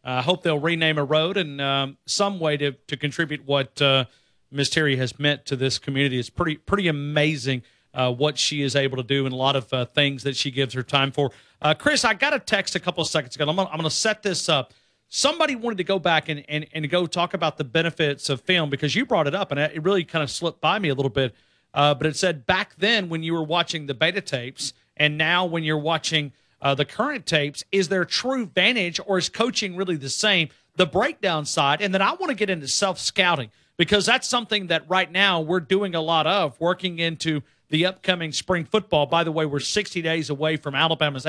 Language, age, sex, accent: English, 40-59, male, American